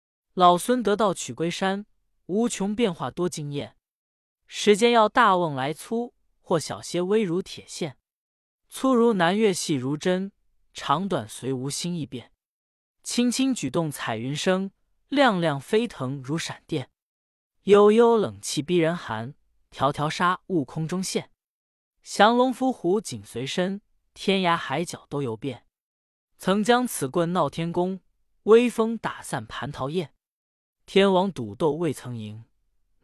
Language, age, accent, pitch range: Chinese, 20-39, native, 140-200 Hz